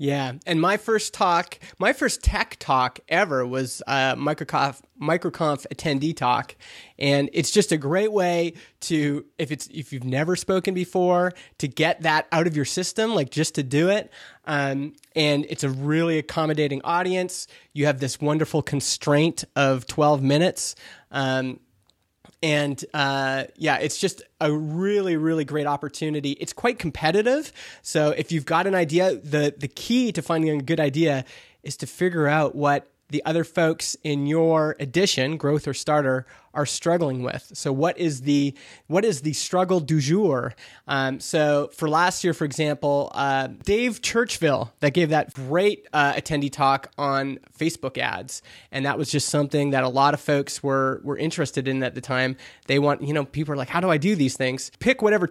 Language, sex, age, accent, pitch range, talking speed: English, male, 20-39, American, 140-165 Hz, 180 wpm